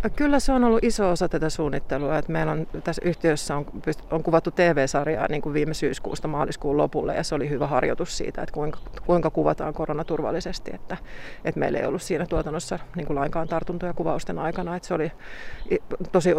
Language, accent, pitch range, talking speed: Finnish, native, 150-180 Hz, 185 wpm